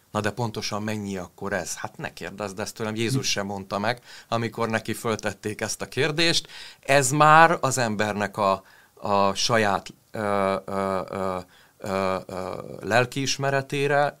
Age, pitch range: 30-49, 105-125 Hz